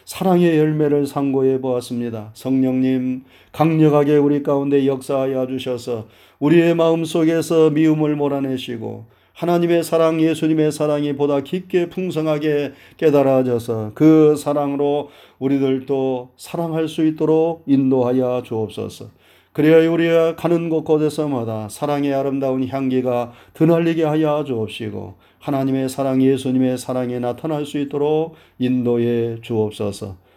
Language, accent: Korean, native